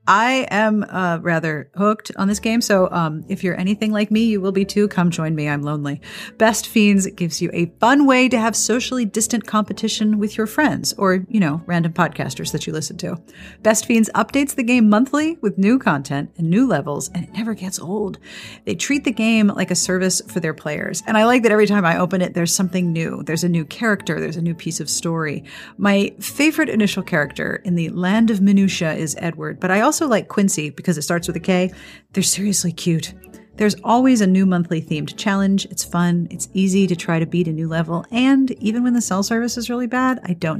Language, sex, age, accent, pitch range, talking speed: English, female, 40-59, American, 170-225 Hz, 225 wpm